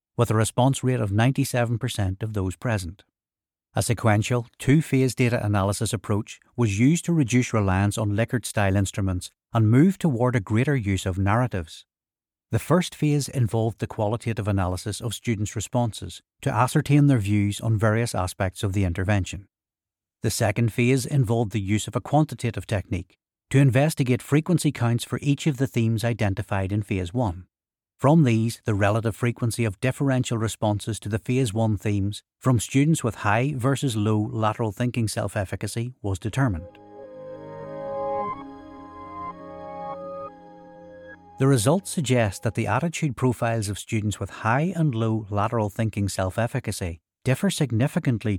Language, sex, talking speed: English, male, 145 wpm